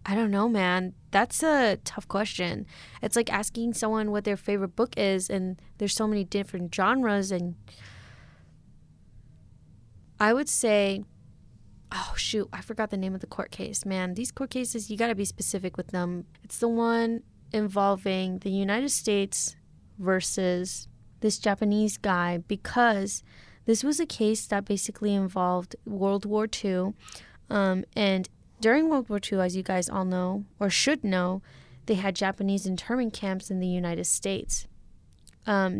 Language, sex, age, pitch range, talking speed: English, female, 20-39, 185-215 Hz, 160 wpm